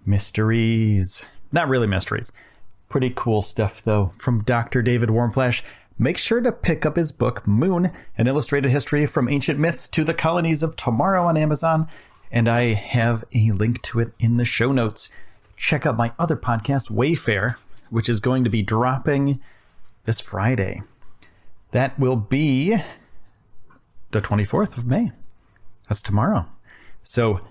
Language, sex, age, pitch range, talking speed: English, male, 30-49, 100-130 Hz, 150 wpm